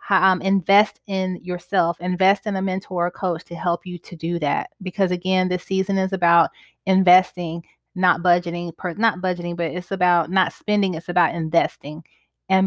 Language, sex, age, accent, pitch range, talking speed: English, female, 20-39, American, 175-200 Hz, 170 wpm